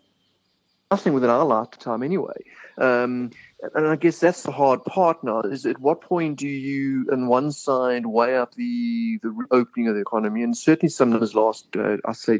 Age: 30-49